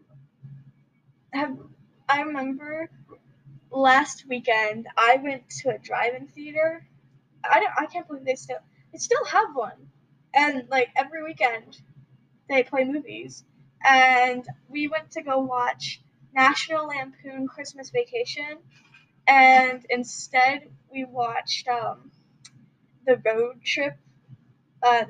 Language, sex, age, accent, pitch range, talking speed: English, female, 10-29, American, 220-280 Hz, 115 wpm